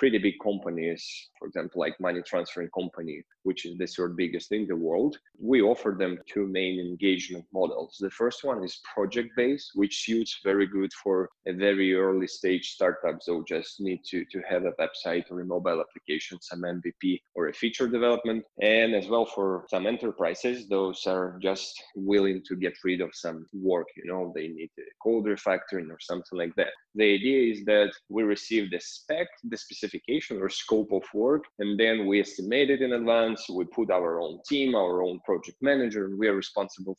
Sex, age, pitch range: male, 20-39, 90-115 Hz